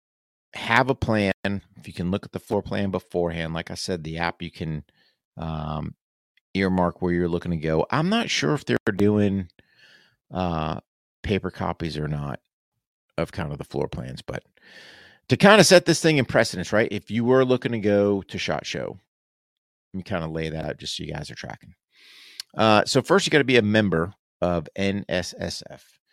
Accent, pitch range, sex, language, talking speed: American, 85-105 Hz, male, English, 200 wpm